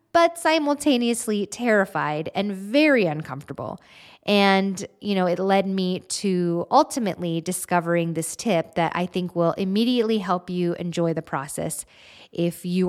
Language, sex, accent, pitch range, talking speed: English, female, American, 175-225 Hz, 135 wpm